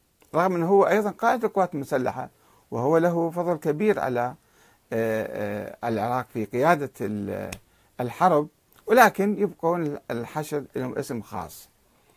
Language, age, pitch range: Arabic, 50-69, 115-155 Hz